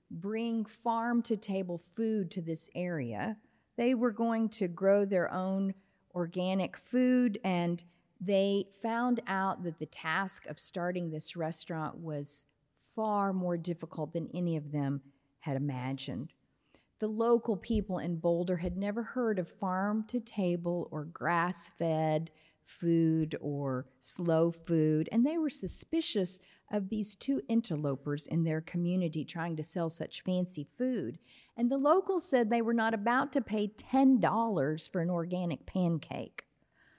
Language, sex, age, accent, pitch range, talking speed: English, female, 40-59, American, 160-220 Hz, 135 wpm